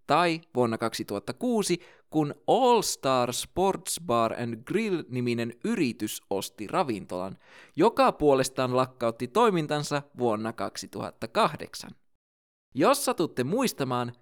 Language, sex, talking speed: Finnish, male, 95 wpm